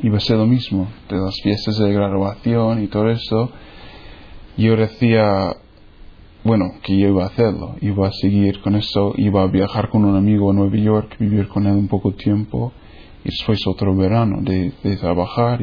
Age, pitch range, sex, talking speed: 20-39, 95-110 Hz, male, 185 wpm